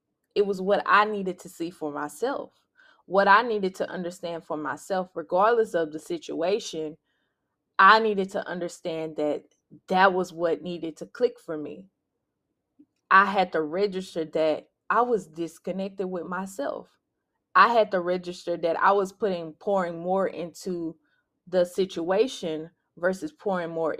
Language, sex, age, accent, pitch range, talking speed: English, female, 20-39, American, 165-200 Hz, 150 wpm